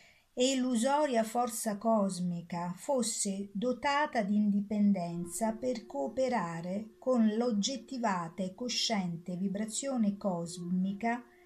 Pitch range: 190-250 Hz